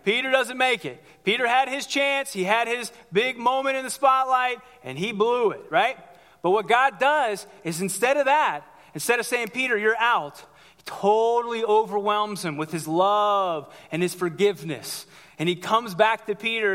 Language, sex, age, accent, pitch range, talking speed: English, male, 30-49, American, 185-240 Hz, 185 wpm